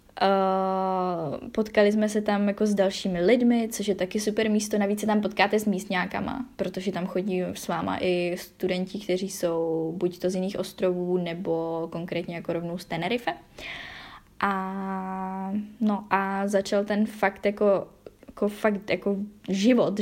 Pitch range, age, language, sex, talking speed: 185-205 Hz, 10-29, Czech, female, 155 wpm